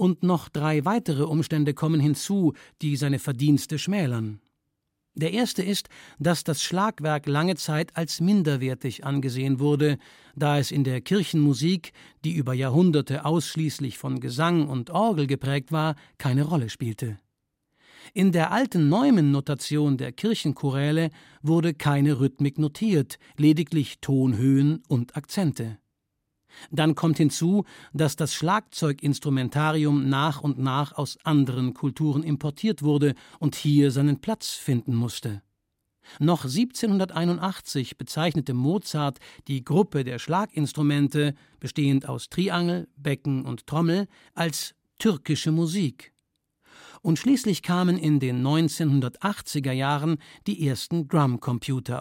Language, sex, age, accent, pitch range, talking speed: German, male, 60-79, German, 135-165 Hz, 115 wpm